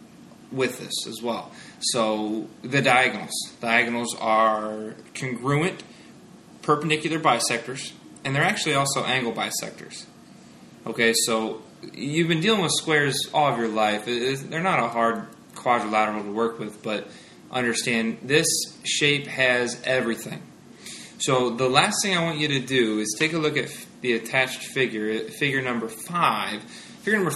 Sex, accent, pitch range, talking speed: male, American, 115-150 Hz, 145 wpm